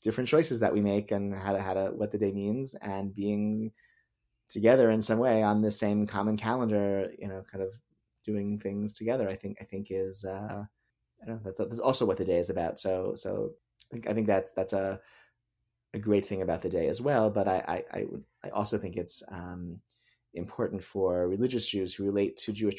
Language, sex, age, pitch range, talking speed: English, male, 30-49, 95-110 Hz, 220 wpm